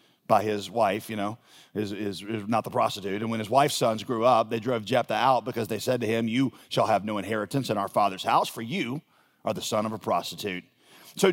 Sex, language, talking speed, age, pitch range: male, English, 240 wpm, 40-59, 115-145 Hz